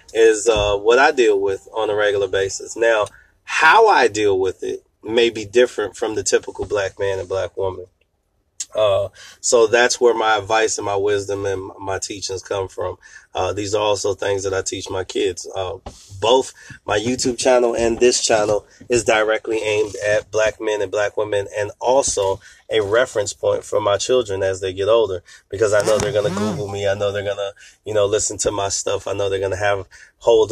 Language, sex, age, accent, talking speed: English, male, 20-39, American, 210 wpm